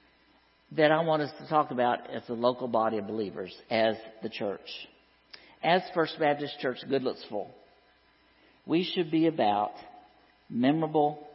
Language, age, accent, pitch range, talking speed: English, 50-69, American, 115-160 Hz, 150 wpm